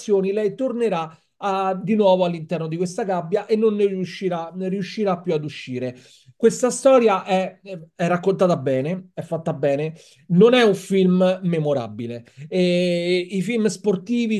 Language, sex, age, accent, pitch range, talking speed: Italian, male, 30-49, native, 155-205 Hz, 140 wpm